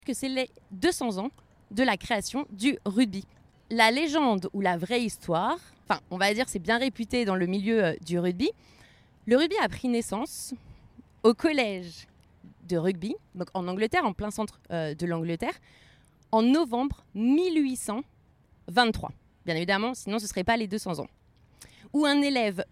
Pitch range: 195-265 Hz